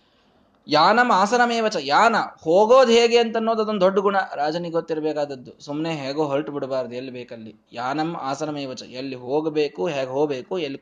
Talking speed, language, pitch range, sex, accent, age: 145 wpm, Kannada, 140-200 Hz, male, native, 20-39